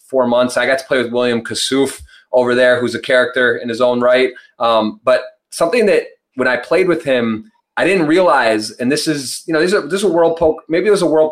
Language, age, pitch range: English, 30-49, 125-170 Hz